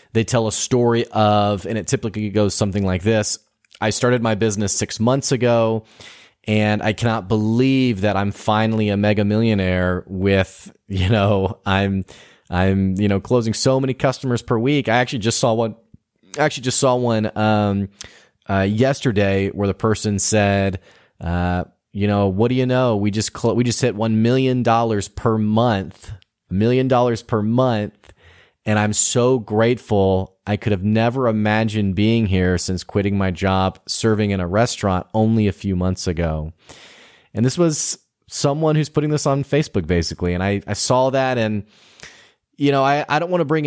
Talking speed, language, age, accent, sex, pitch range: 180 wpm, English, 30-49, American, male, 100-120 Hz